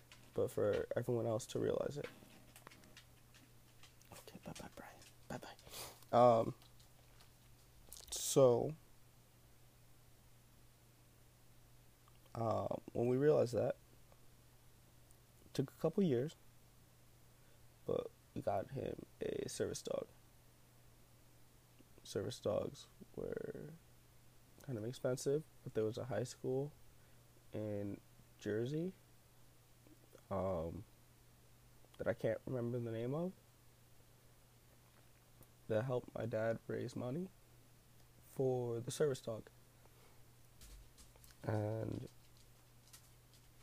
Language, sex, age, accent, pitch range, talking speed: English, male, 20-39, American, 115-125 Hz, 85 wpm